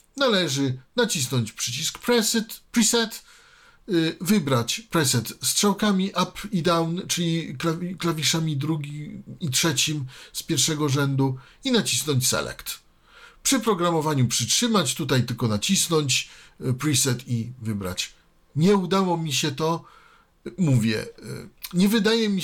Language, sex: Polish, male